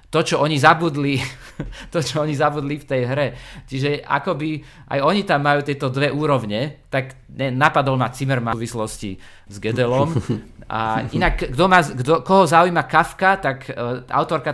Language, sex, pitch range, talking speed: Slovak, male, 125-160 Hz, 165 wpm